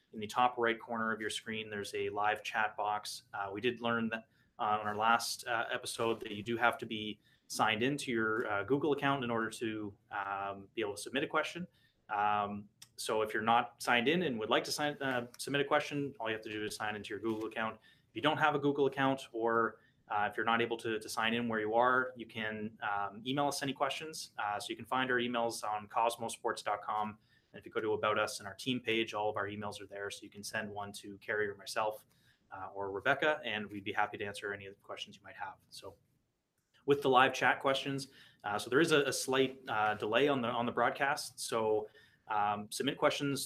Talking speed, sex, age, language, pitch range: 240 wpm, male, 20-39, English, 105-130 Hz